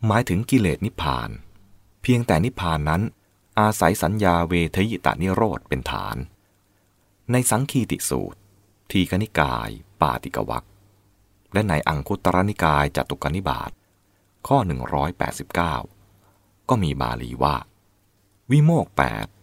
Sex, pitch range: male, 80-100 Hz